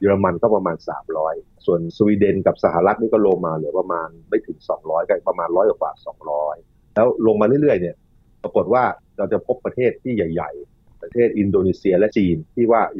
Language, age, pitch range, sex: Thai, 30-49, 90-115 Hz, male